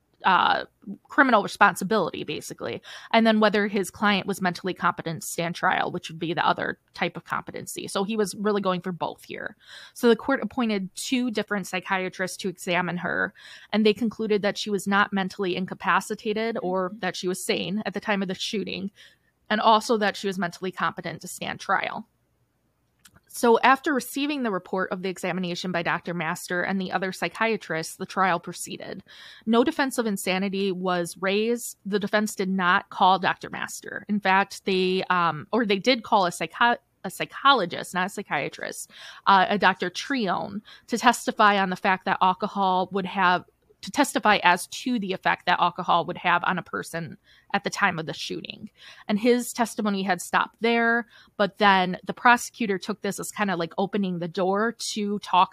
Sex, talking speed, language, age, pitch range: female, 185 wpm, English, 20-39, 180-215 Hz